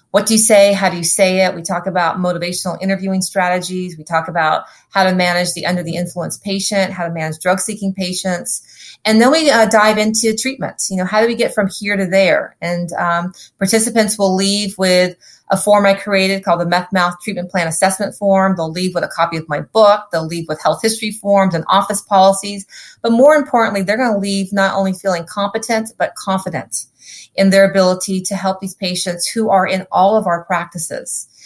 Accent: American